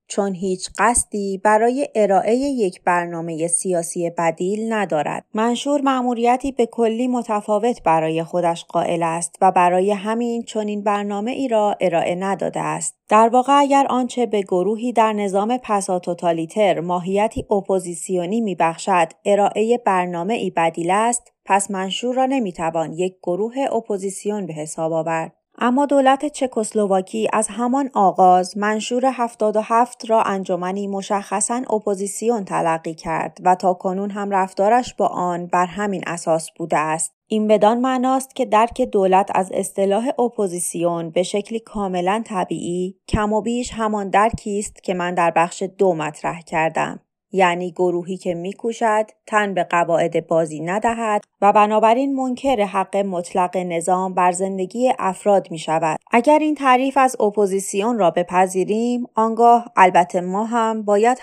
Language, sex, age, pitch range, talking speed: Persian, female, 30-49, 180-225 Hz, 140 wpm